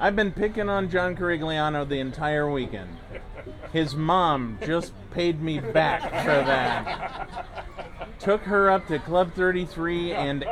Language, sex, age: English, male, 30-49